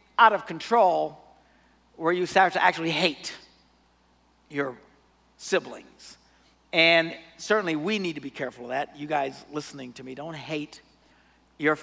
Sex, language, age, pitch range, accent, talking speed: male, English, 50-69, 150-210 Hz, American, 140 wpm